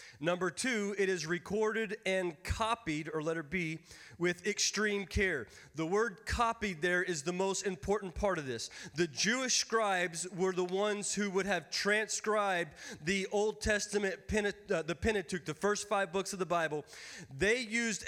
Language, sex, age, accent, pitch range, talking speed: English, male, 30-49, American, 175-215 Hz, 160 wpm